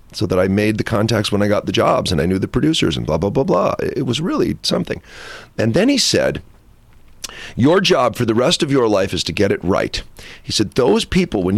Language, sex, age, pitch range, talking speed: English, male, 40-59, 100-150 Hz, 245 wpm